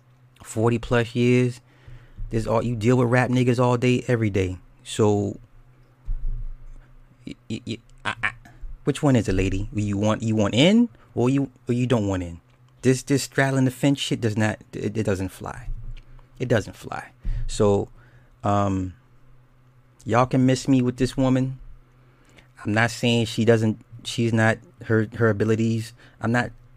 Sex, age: male, 30-49